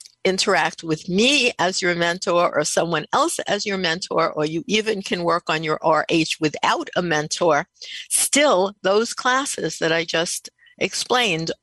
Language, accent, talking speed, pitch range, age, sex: English, American, 155 wpm, 160-205 Hz, 60-79, female